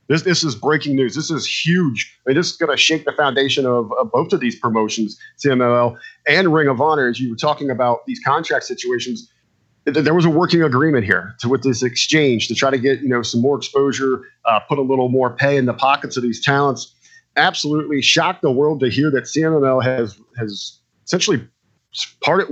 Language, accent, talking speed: English, American, 210 wpm